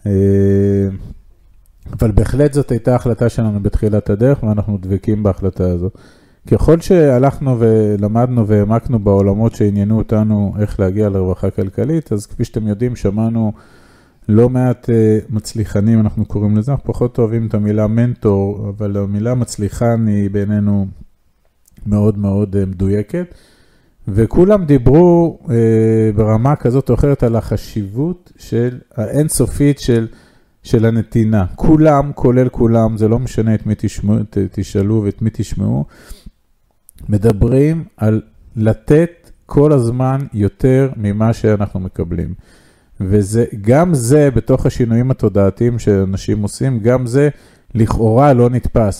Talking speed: 120 wpm